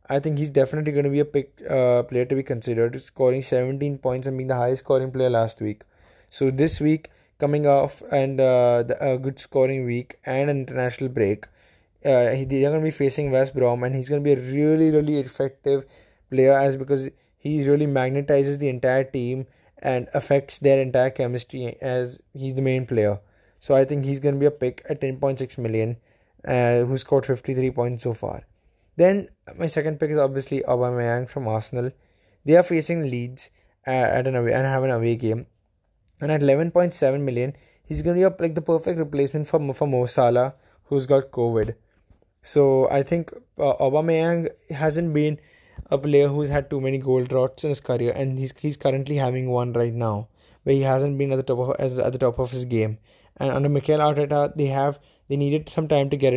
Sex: male